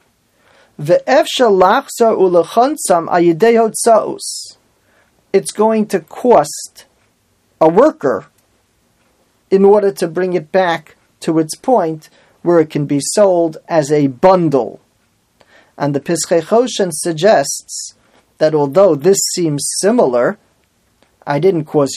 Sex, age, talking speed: male, 40-59, 100 wpm